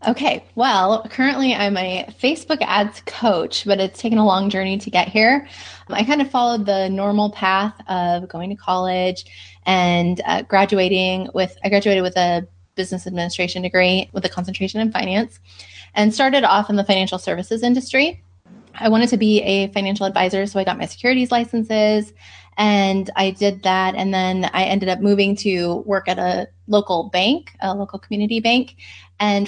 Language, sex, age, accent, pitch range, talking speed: English, female, 20-39, American, 180-215 Hz, 175 wpm